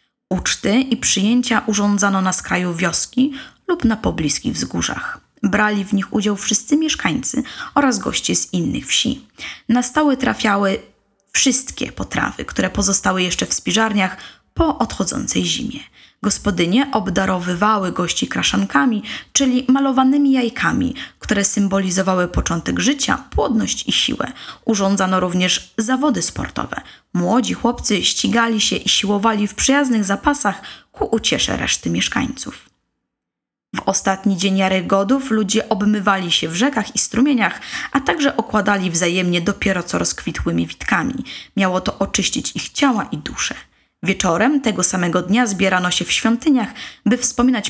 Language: Polish